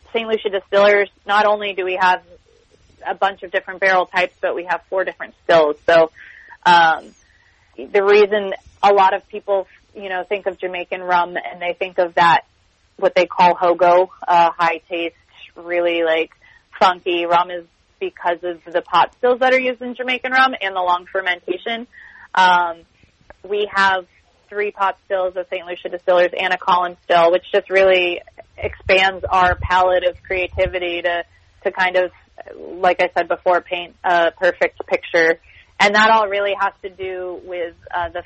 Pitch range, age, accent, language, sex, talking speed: 175-195 Hz, 20-39, American, English, female, 170 wpm